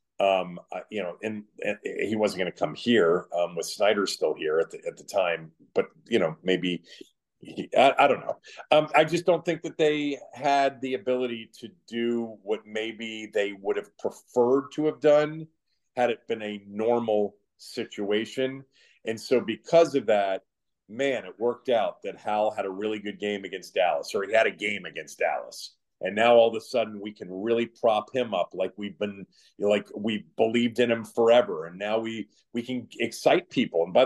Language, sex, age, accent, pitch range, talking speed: English, male, 40-59, American, 105-135 Hz, 195 wpm